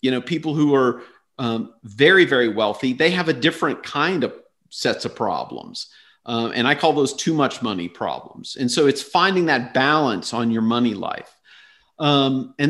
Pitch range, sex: 125-160 Hz, male